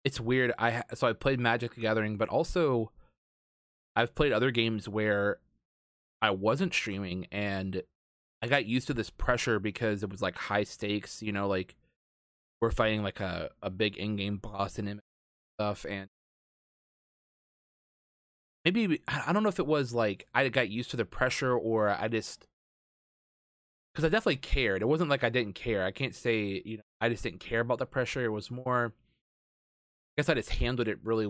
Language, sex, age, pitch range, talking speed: English, male, 20-39, 100-120 Hz, 180 wpm